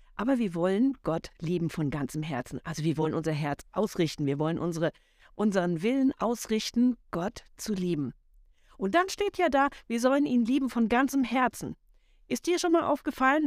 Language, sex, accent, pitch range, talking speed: German, female, German, 195-265 Hz, 180 wpm